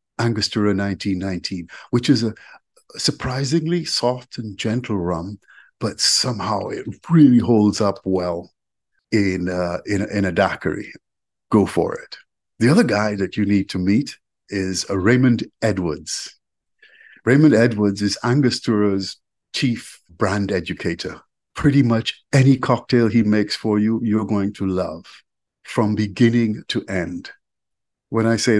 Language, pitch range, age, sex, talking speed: English, 95-115 Hz, 50-69, male, 130 wpm